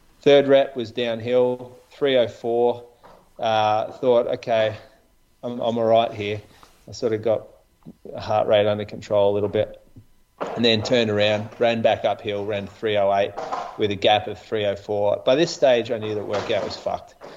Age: 30-49